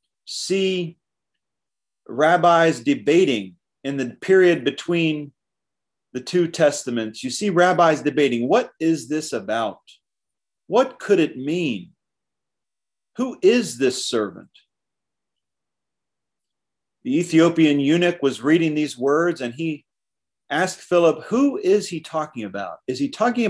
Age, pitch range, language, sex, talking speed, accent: 40-59, 125-180 Hz, English, male, 115 wpm, American